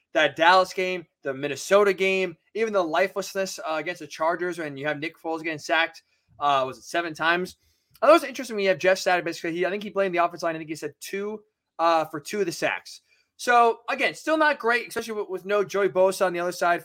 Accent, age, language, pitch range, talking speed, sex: American, 20-39, English, 165-205 Hz, 245 wpm, male